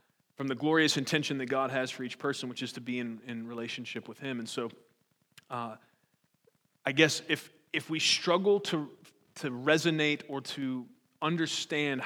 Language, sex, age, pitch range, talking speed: English, male, 30-49, 135-160 Hz, 170 wpm